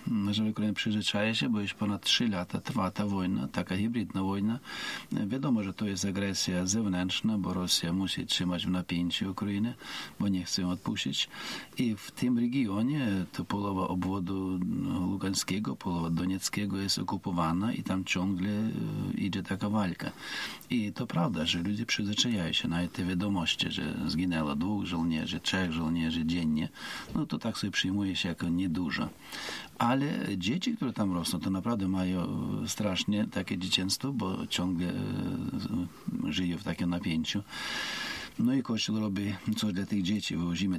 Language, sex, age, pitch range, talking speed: Polish, male, 50-69, 85-100 Hz, 150 wpm